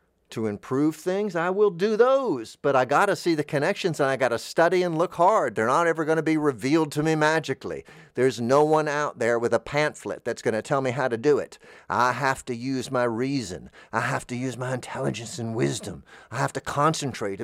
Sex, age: male, 50-69